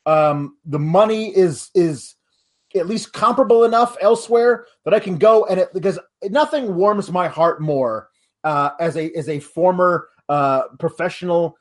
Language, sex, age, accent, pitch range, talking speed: English, male, 30-49, American, 150-195 Hz, 155 wpm